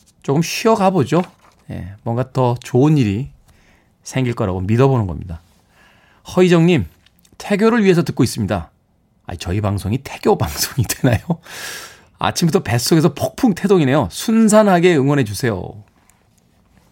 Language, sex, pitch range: Korean, male, 105-160 Hz